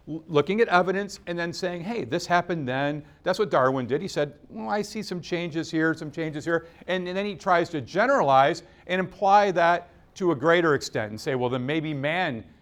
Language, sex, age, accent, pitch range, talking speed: English, male, 50-69, American, 135-185 Hz, 215 wpm